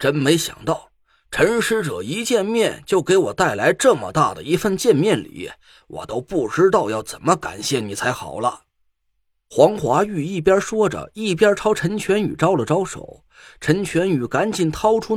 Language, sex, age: Chinese, male, 30-49